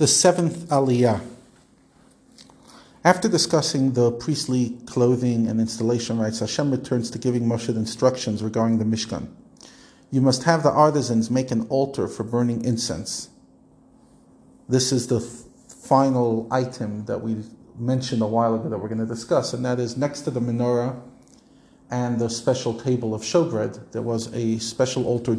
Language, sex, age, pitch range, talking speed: English, male, 40-59, 115-135 Hz, 155 wpm